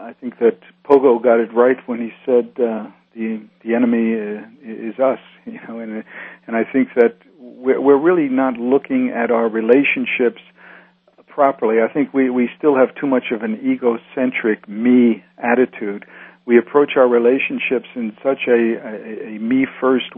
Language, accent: English, American